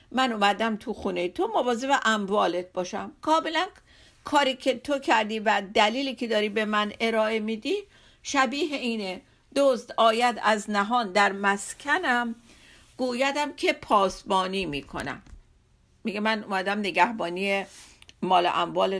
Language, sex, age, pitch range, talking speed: Persian, female, 50-69, 200-275 Hz, 125 wpm